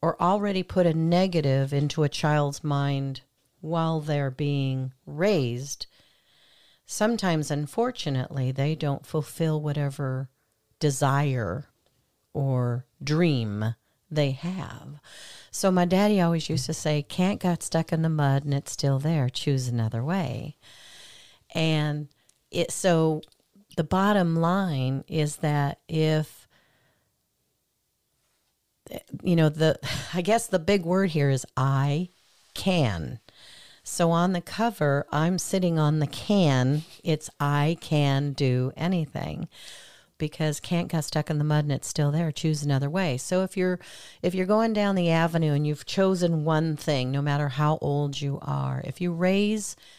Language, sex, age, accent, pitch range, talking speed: English, female, 50-69, American, 140-170 Hz, 140 wpm